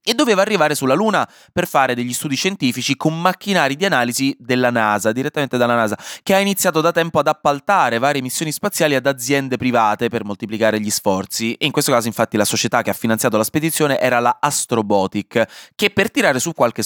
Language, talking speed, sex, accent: Italian, 200 wpm, male, native